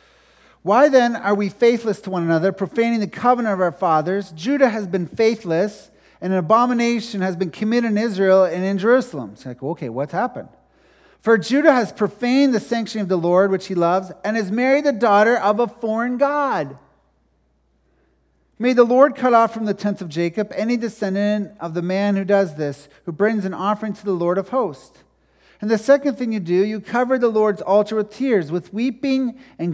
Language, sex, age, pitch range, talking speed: English, male, 40-59, 195-240 Hz, 200 wpm